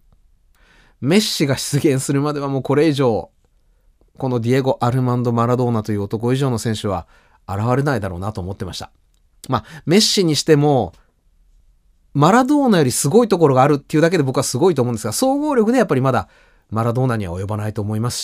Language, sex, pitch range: Japanese, male, 110-155 Hz